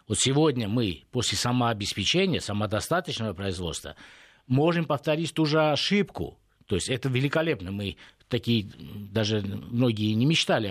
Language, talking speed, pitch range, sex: Russian, 125 wpm, 115-140 Hz, male